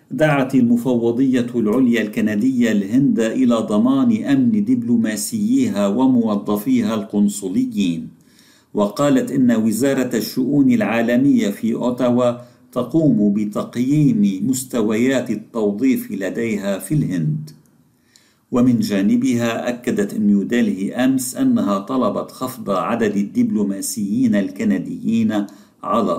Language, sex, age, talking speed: Arabic, male, 50-69, 85 wpm